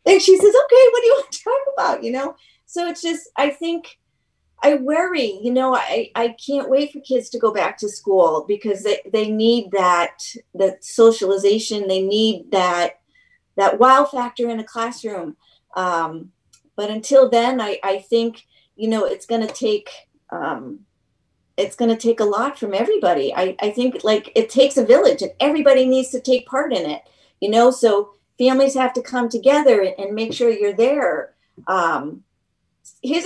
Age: 40-59